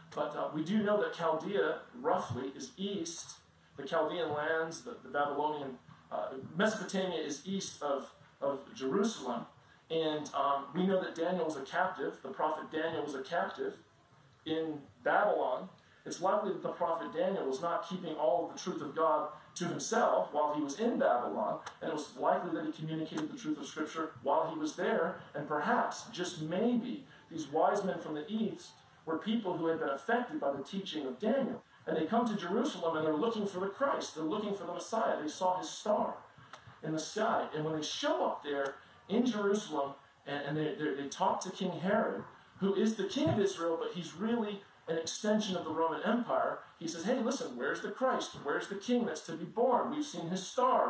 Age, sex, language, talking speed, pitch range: 40-59, male, English, 200 wpm, 155-215 Hz